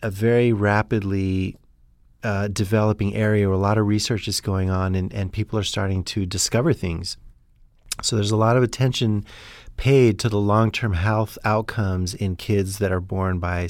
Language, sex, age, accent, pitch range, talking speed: English, male, 40-59, American, 95-115 Hz, 175 wpm